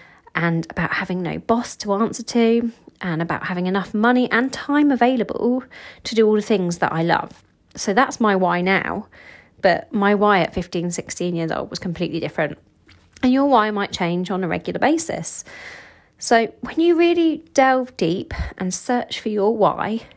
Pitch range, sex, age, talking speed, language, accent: 185-255 Hz, female, 30-49, 180 wpm, English, British